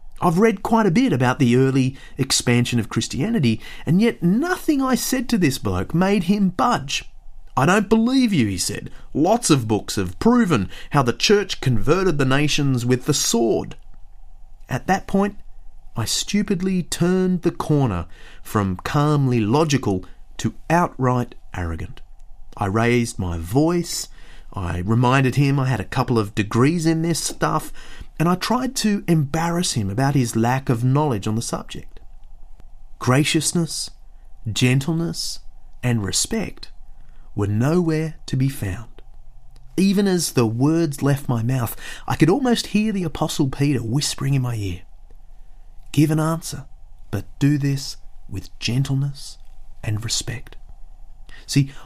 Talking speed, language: 145 wpm, English